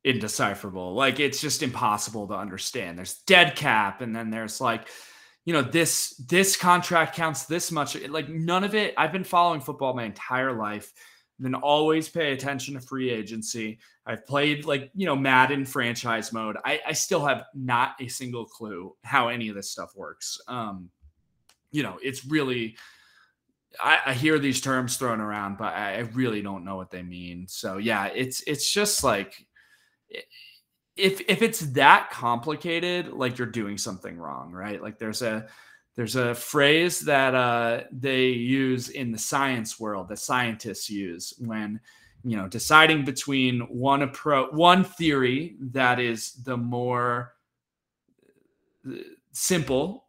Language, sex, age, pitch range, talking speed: English, male, 20-39, 115-150 Hz, 155 wpm